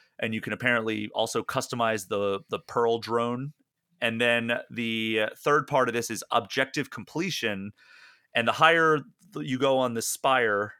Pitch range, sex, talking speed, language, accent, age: 110-125 Hz, male, 155 wpm, English, American, 30-49